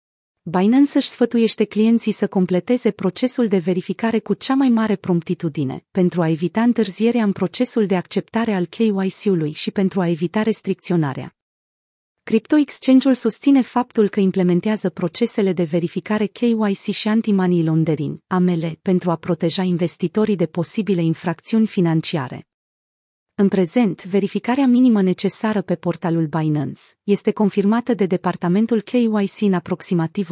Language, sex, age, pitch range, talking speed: Romanian, female, 30-49, 180-225 Hz, 130 wpm